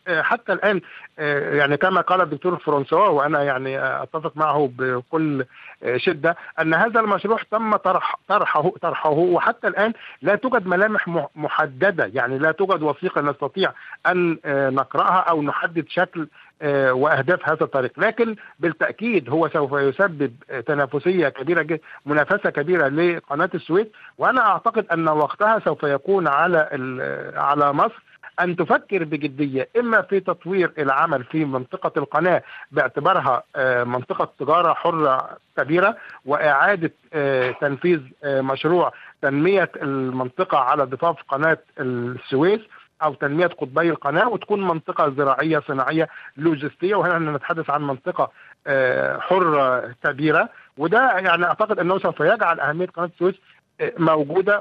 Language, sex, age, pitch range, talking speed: Arabic, male, 50-69, 145-185 Hz, 120 wpm